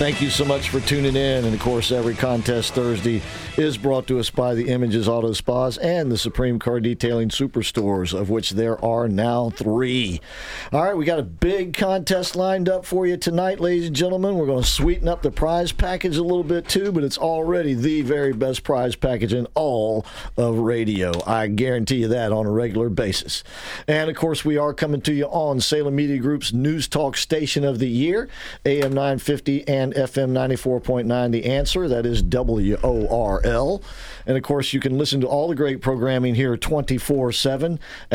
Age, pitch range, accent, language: 50-69, 120-155 Hz, American, English